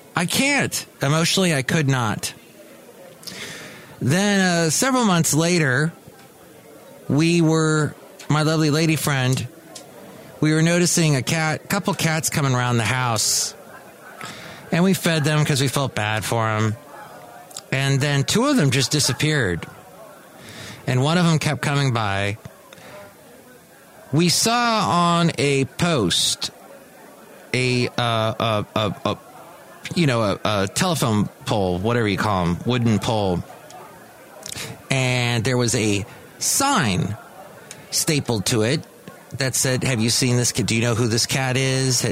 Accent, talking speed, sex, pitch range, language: American, 140 wpm, male, 115-160 Hz, English